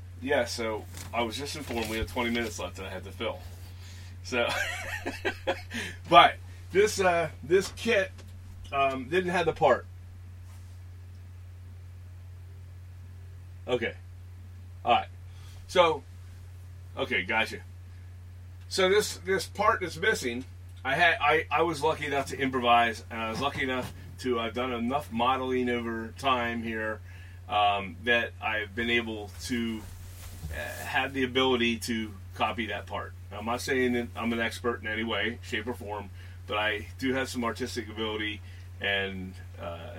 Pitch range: 90-120 Hz